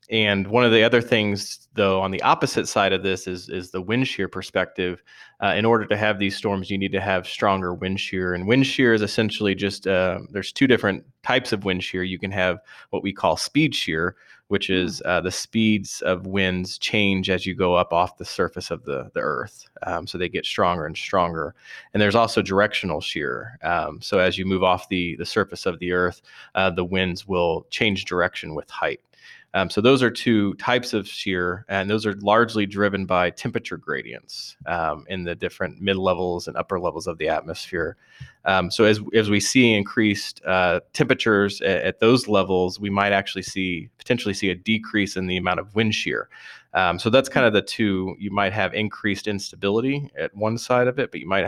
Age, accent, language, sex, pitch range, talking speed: 20-39, American, English, male, 90-105 Hz, 210 wpm